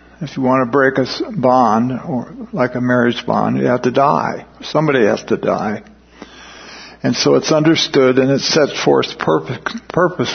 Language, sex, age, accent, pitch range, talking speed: English, male, 50-69, American, 115-150 Hz, 175 wpm